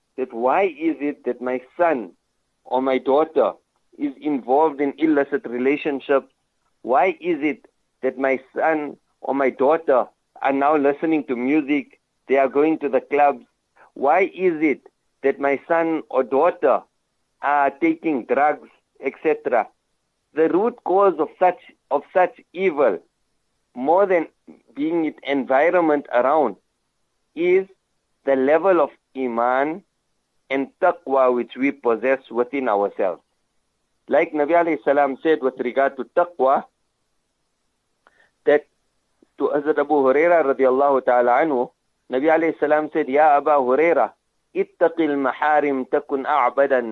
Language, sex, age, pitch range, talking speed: English, male, 60-79, 135-175 Hz, 130 wpm